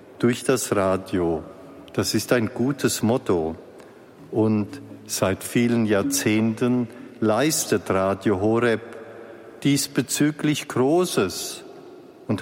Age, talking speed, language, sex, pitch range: 50-69, 85 wpm, German, male, 105-140 Hz